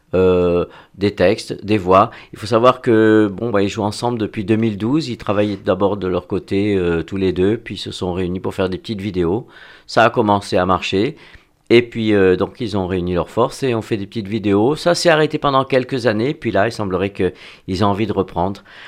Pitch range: 95-110 Hz